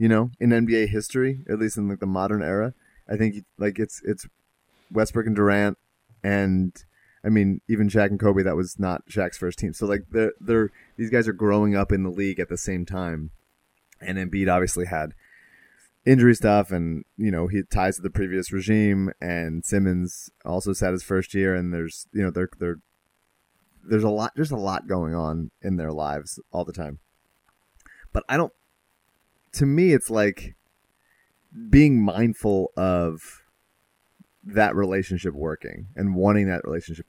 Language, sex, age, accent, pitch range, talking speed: English, male, 30-49, American, 90-115 Hz, 175 wpm